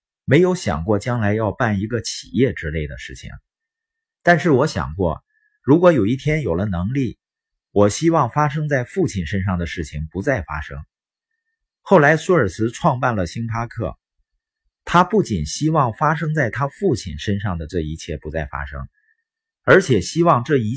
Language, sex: Chinese, male